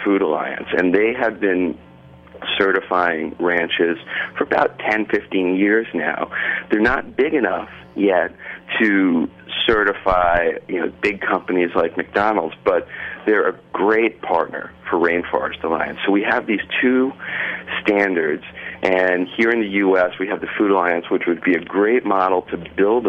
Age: 40-59